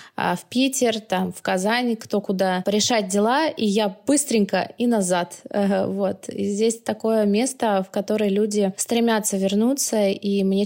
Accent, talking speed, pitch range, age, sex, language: native, 140 wpm, 190-215 Hz, 20-39, female, Russian